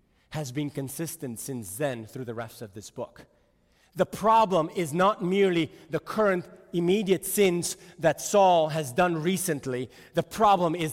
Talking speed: 155 wpm